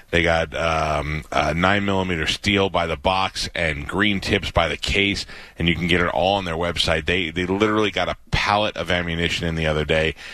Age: 30-49